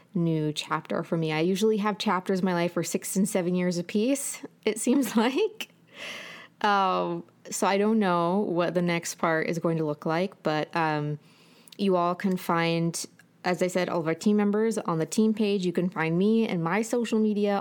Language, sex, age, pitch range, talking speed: English, female, 20-39, 170-210 Hz, 205 wpm